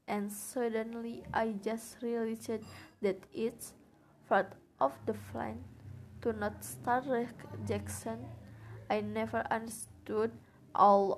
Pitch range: 195-230 Hz